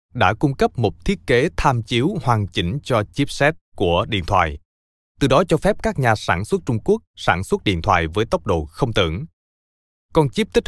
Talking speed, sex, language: 210 wpm, male, Vietnamese